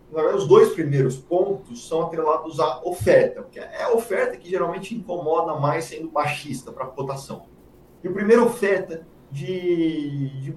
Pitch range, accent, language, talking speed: 135-180 Hz, Brazilian, Portuguese, 155 wpm